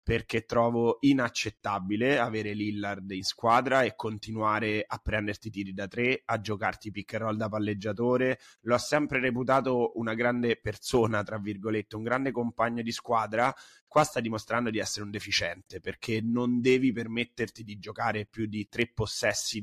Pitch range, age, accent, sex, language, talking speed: 105-125 Hz, 30-49, native, male, Italian, 155 wpm